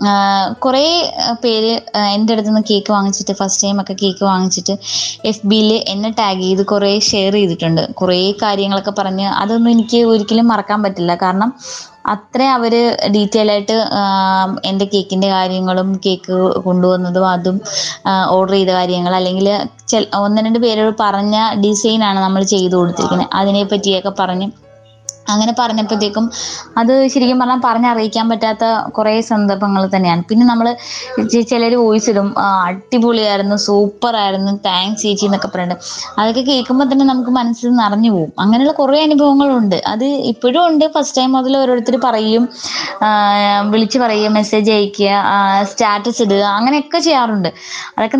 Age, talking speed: 20-39, 125 wpm